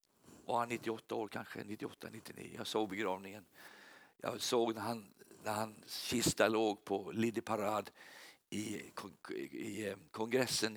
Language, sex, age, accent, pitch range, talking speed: Swedish, male, 50-69, native, 110-145 Hz, 130 wpm